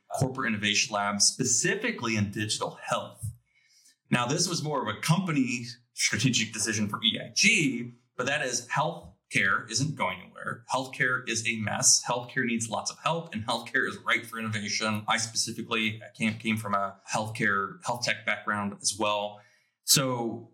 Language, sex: English, male